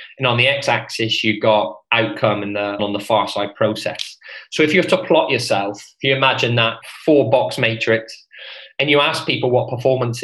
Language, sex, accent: English, male, British